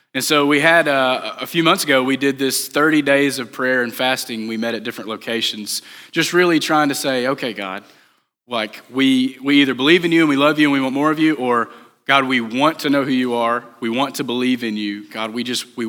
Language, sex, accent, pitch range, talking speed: English, male, American, 115-145 Hz, 250 wpm